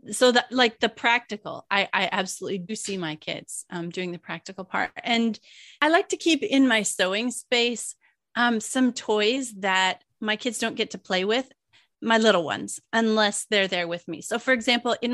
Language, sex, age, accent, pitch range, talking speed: English, female, 30-49, American, 185-235 Hz, 195 wpm